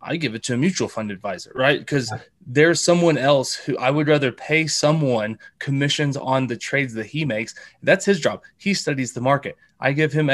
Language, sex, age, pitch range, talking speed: English, male, 20-39, 120-150 Hz, 210 wpm